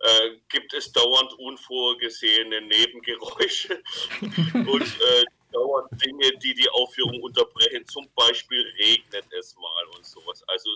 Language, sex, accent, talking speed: German, male, German, 125 wpm